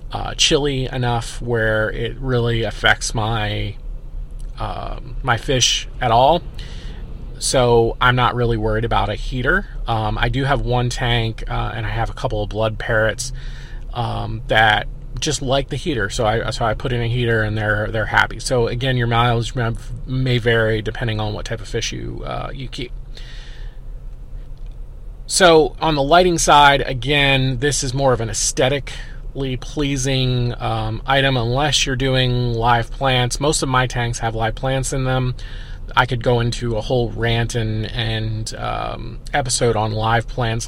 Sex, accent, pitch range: male, American, 110-130 Hz